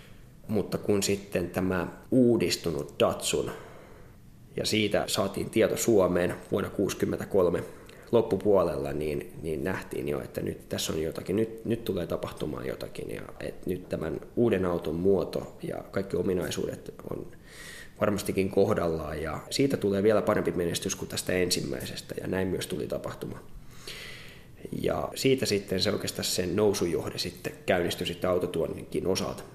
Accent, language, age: native, Finnish, 20-39